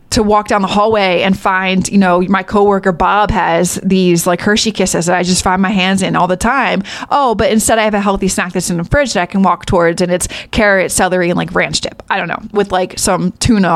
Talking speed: 255 wpm